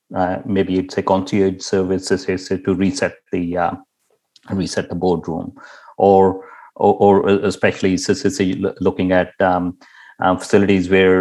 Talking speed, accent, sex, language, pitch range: 150 wpm, Indian, male, English, 95-105 Hz